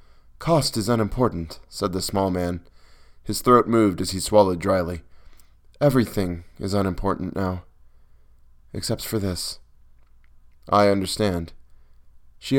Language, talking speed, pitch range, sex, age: English, 115 wpm, 80-105 Hz, male, 20-39